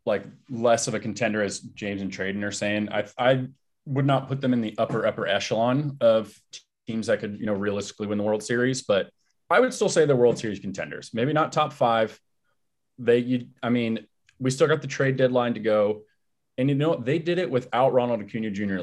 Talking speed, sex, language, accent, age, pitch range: 215 wpm, male, English, American, 30-49, 105-140 Hz